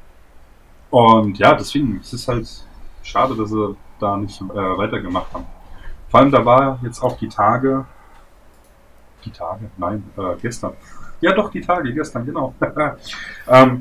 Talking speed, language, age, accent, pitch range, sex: 150 wpm, German, 30-49, German, 100-125 Hz, male